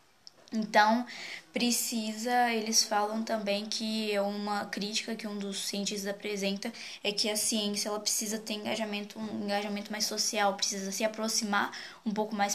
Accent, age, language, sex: Brazilian, 10-29, Portuguese, female